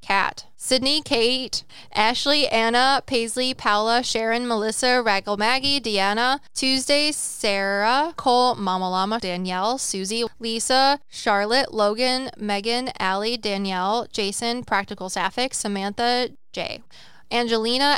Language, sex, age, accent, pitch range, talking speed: English, female, 20-39, American, 200-250 Hz, 105 wpm